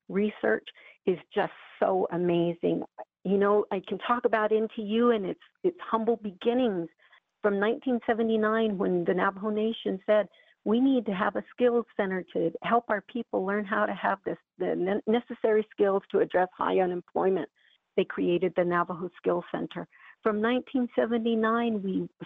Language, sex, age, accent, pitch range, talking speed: English, female, 50-69, American, 185-220 Hz, 150 wpm